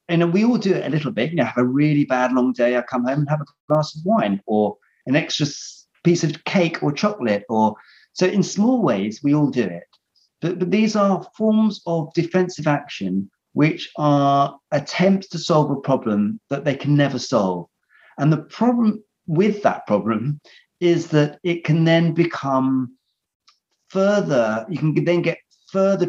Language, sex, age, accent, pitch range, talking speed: English, male, 40-59, British, 120-175 Hz, 185 wpm